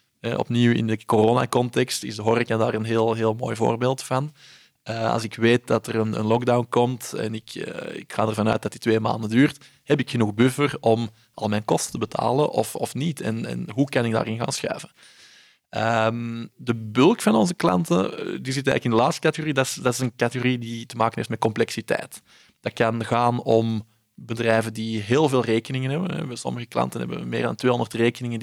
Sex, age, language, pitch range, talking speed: male, 20-39, Dutch, 110-130 Hz, 210 wpm